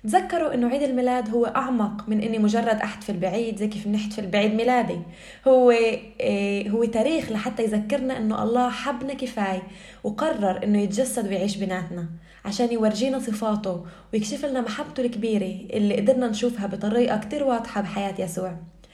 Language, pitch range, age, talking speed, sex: Arabic, 200-245 Hz, 20-39, 150 wpm, female